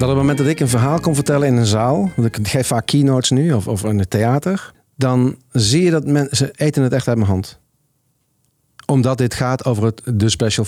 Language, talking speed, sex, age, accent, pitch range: Dutch, 235 wpm, male, 50-69, Dutch, 115-145 Hz